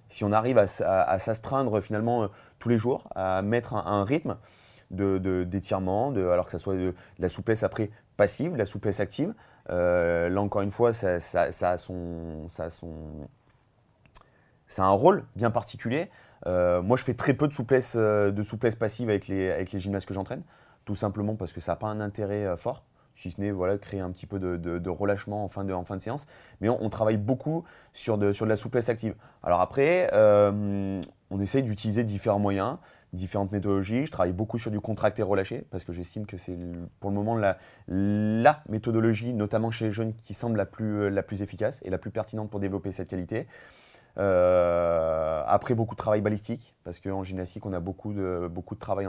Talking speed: 210 wpm